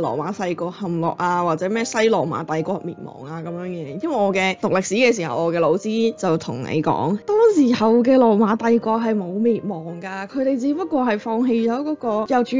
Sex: female